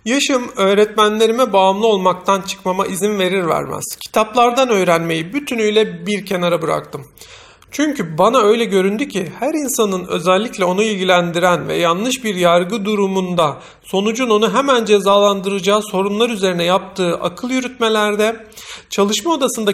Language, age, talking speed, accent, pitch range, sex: Turkish, 40-59, 120 wpm, native, 190-230 Hz, male